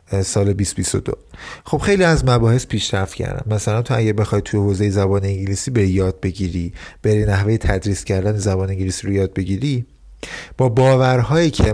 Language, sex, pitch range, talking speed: Persian, male, 100-135 Hz, 165 wpm